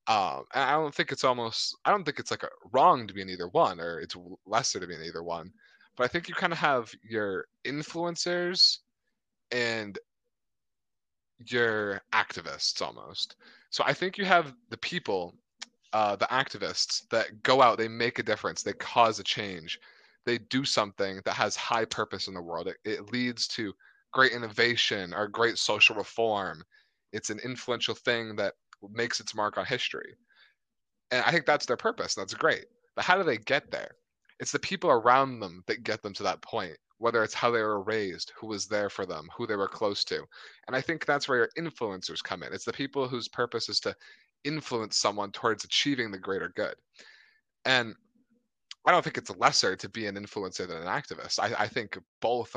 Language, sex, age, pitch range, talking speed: English, male, 20-39, 110-170 Hz, 195 wpm